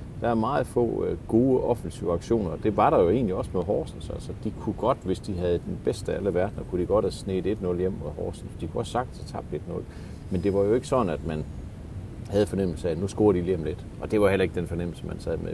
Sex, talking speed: male, 275 wpm